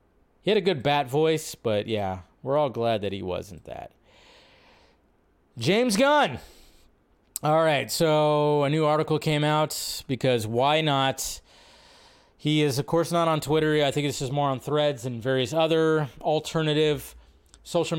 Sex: male